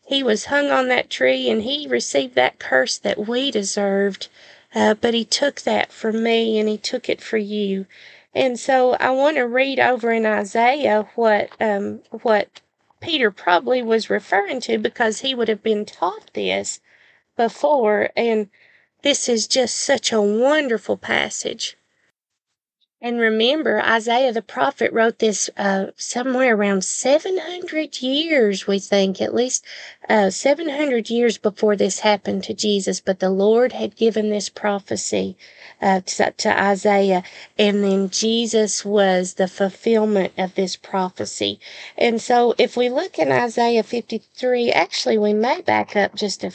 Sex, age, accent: female, 40-59, American